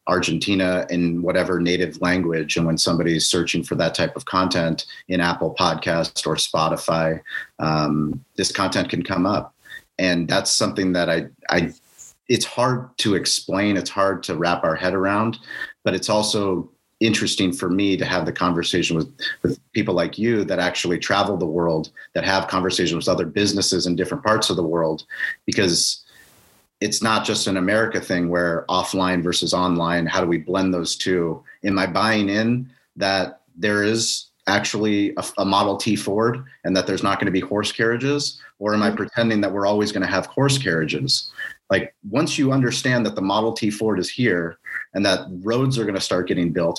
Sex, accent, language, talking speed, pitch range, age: male, American, English, 185 wpm, 85-105 Hz, 30-49